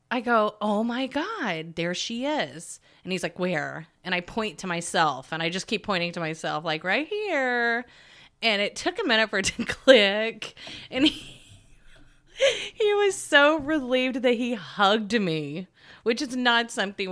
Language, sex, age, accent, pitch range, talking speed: English, female, 30-49, American, 165-240 Hz, 175 wpm